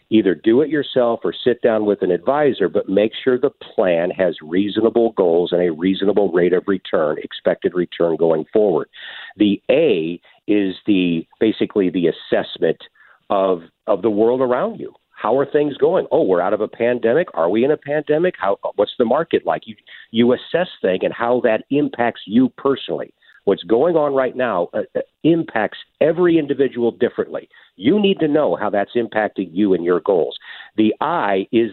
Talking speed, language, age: 180 wpm, English, 50-69